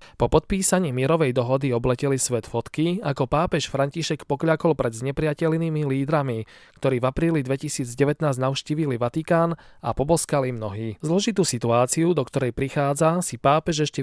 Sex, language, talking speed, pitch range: male, Slovak, 135 wpm, 125-155 Hz